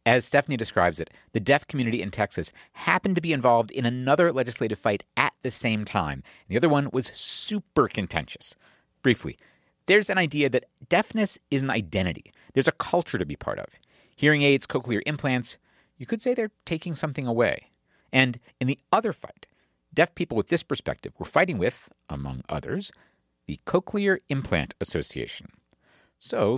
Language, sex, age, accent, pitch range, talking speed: English, male, 50-69, American, 105-165 Hz, 165 wpm